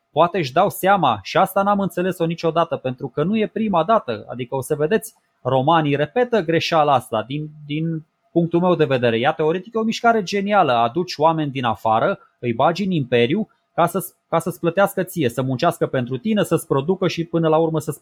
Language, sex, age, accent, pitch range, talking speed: Romanian, male, 20-39, native, 130-170 Hz, 200 wpm